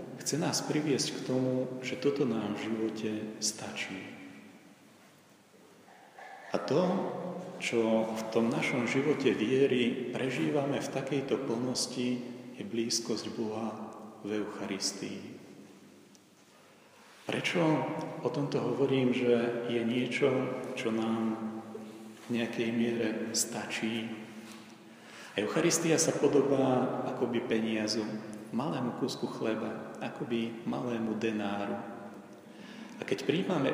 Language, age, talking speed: Slovak, 40-59, 100 wpm